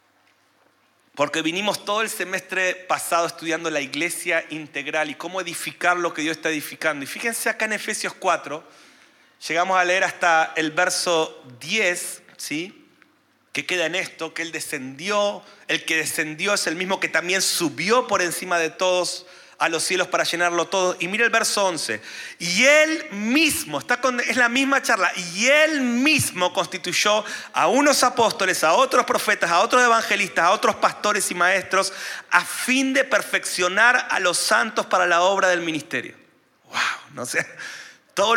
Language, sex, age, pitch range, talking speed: Spanish, male, 30-49, 170-210 Hz, 165 wpm